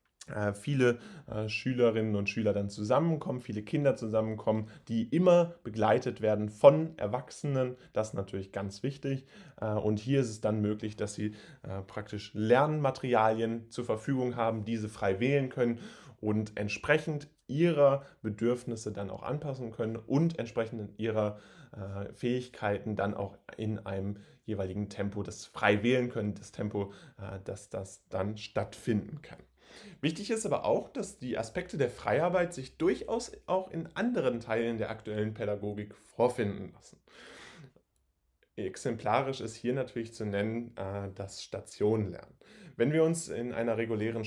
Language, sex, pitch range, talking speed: German, male, 105-135 Hz, 135 wpm